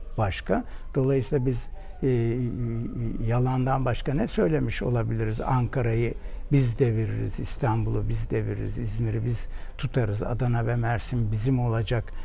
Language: Turkish